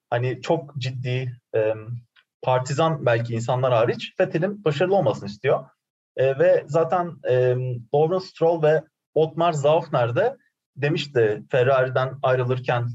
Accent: native